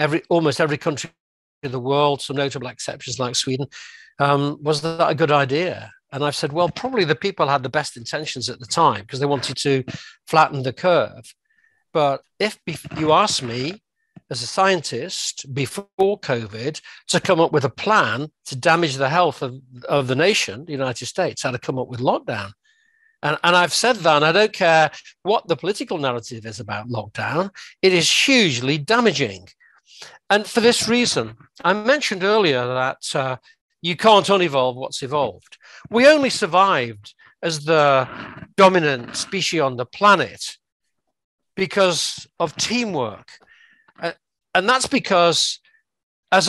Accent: British